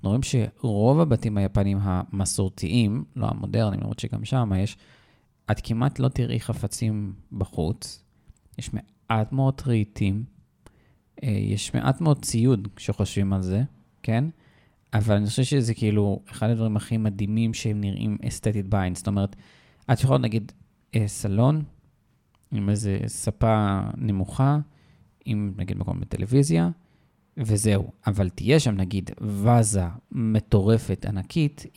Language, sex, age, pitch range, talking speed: Hebrew, male, 20-39, 105-125 Hz, 105 wpm